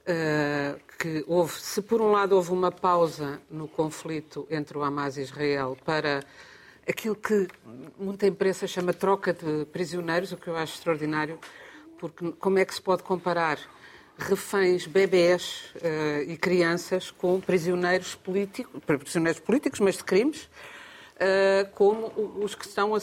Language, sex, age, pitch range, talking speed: Portuguese, female, 50-69, 165-200 Hz, 150 wpm